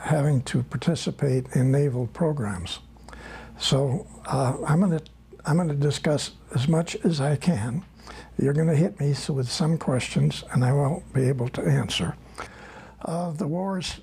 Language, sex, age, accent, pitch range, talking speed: Dutch, male, 60-79, American, 140-180 Hz, 165 wpm